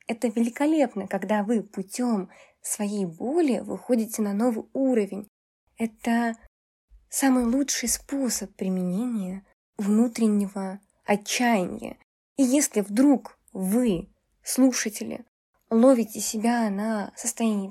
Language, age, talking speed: Russian, 20-39, 90 wpm